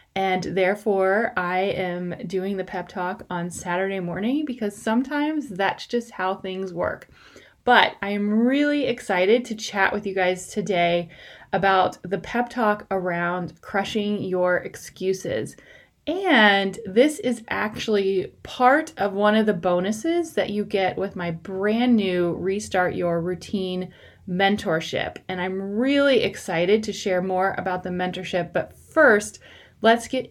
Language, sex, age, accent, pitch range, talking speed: English, female, 30-49, American, 185-225 Hz, 145 wpm